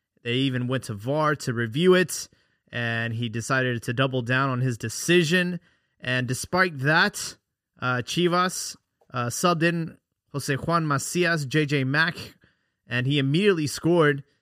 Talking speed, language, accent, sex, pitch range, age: 140 wpm, English, American, male, 130-160 Hz, 20-39